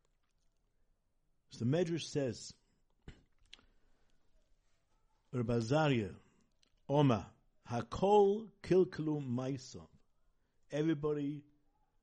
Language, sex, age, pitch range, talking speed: English, male, 60-79, 105-150 Hz, 50 wpm